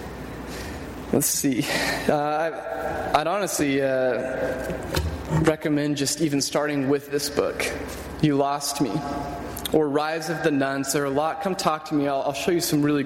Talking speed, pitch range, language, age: 160 wpm, 140-170 Hz, English, 20-39